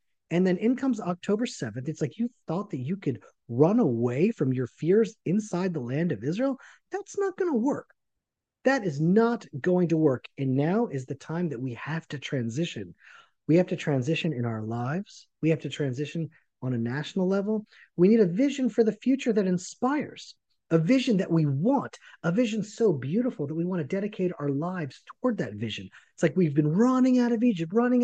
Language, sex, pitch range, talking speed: English, male, 140-215 Hz, 205 wpm